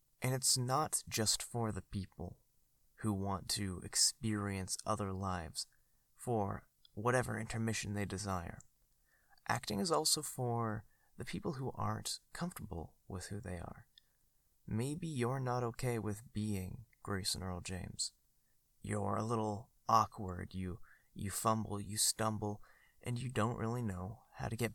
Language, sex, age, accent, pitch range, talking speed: English, male, 20-39, American, 100-120 Hz, 140 wpm